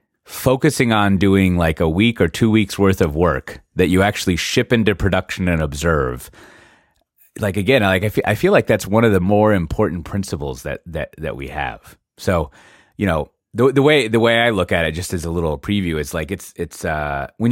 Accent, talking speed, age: American, 215 wpm, 30-49